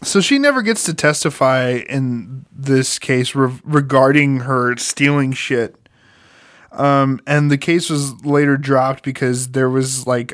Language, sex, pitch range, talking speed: English, male, 125-160 Hz, 140 wpm